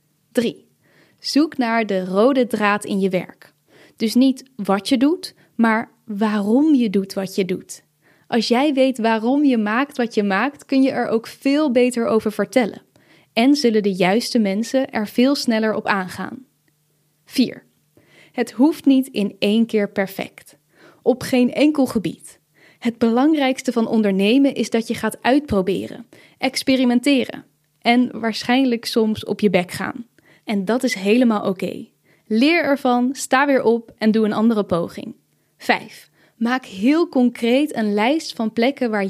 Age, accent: 10-29, Dutch